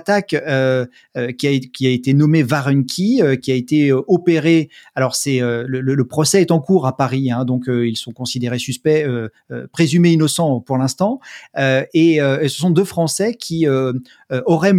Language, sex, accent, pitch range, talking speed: French, male, French, 130-165 Hz, 155 wpm